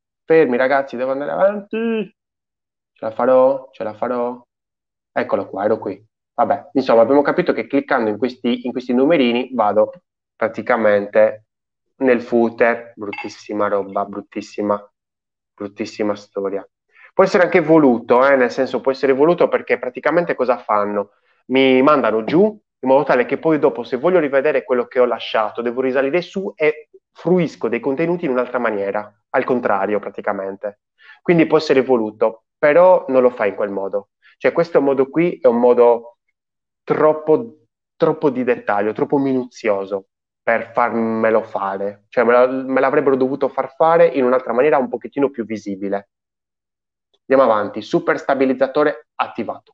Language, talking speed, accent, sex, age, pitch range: Italian, 150 wpm, native, male, 20-39, 105-150 Hz